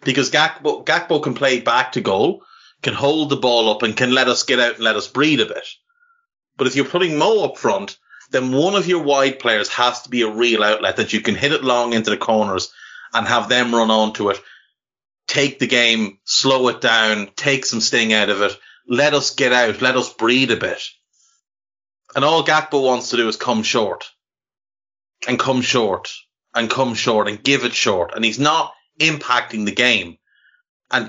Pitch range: 110-135 Hz